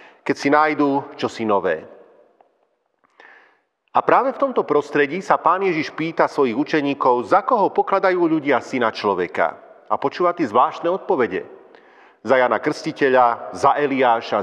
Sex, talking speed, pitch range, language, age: male, 135 wpm, 135-165 Hz, Slovak, 40-59